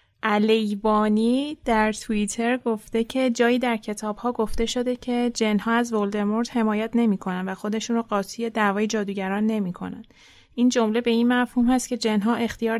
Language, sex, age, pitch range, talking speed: Persian, female, 30-49, 205-240 Hz, 160 wpm